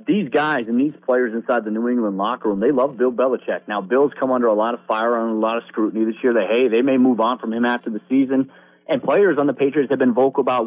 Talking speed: 280 wpm